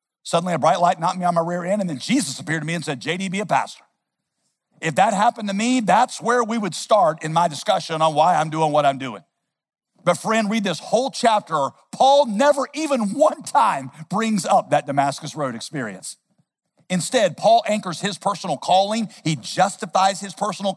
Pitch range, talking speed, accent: 150-200 Hz, 200 wpm, American